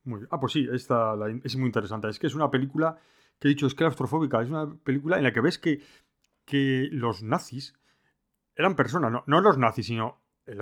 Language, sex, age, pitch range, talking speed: Spanish, male, 30-49, 125-155 Hz, 210 wpm